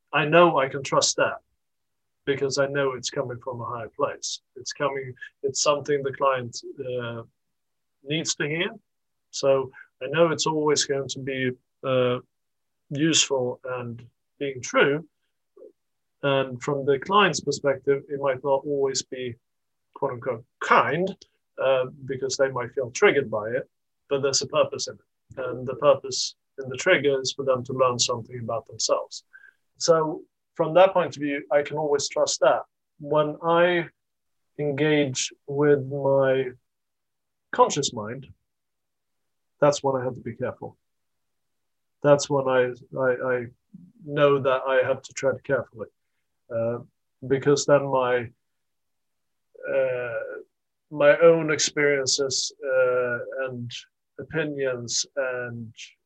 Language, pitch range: English, 130-160 Hz